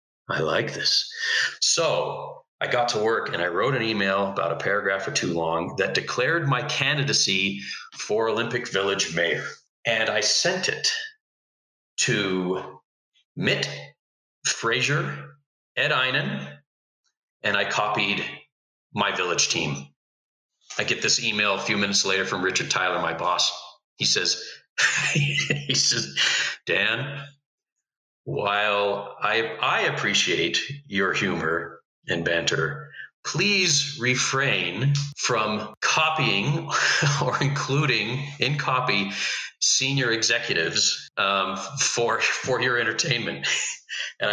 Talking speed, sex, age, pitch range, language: 115 wpm, male, 40-59, 100-145 Hz, English